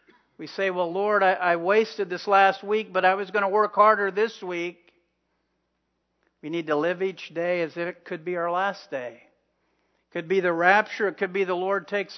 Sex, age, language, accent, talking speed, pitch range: male, 50-69, English, American, 215 wpm, 140-180 Hz